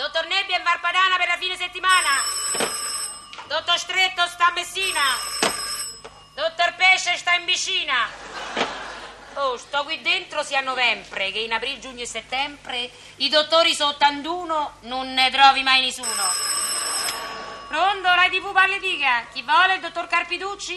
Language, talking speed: Italian, 145 wpm